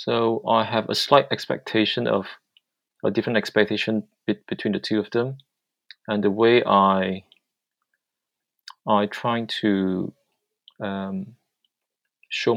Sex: male